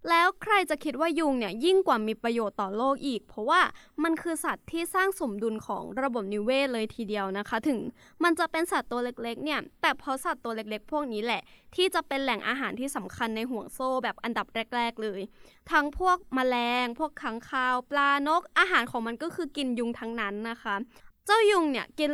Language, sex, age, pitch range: English, female, 20-39, 230-320 Hz